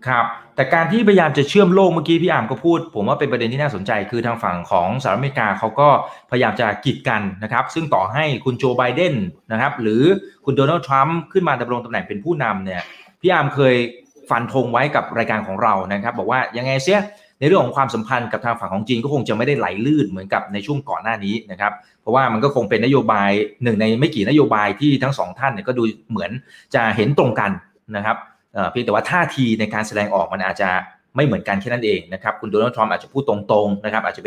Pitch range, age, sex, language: 110-150 Hz, 20-39, male, Thai